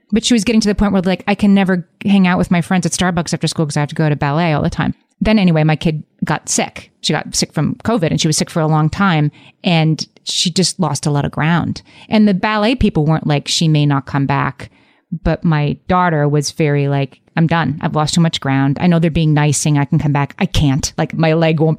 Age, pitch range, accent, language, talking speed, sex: 30-49, 150-180 Hz, American, English, 270 wpm, female